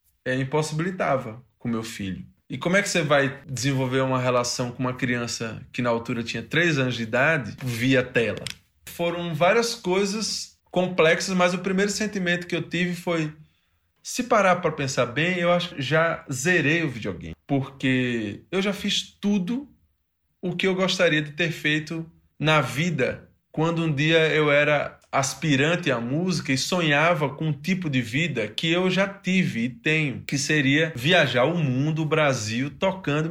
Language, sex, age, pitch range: Portuguese, male, 20-39, 130-180 Hz